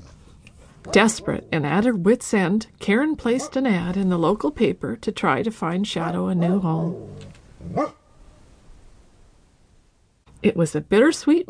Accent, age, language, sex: American, 50-69, English, female